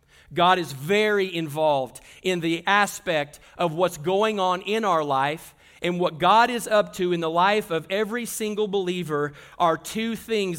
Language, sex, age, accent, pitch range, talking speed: English, male, 40-59, American, 175-215 Hz, 170 wpm